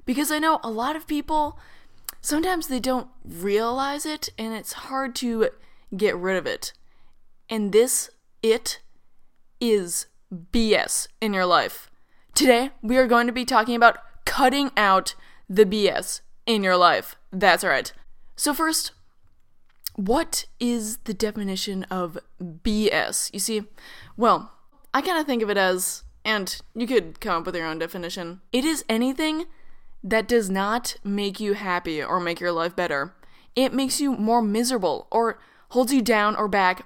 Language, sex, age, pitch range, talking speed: English, female, 10-29, 195-255 Hz, 160 wpm